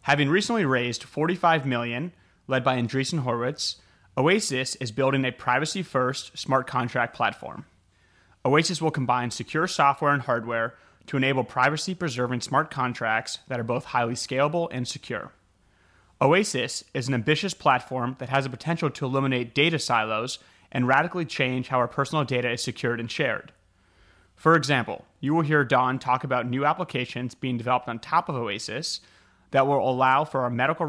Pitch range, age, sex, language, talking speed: 120-145 Hz, 30-49, male, English, 160 wpm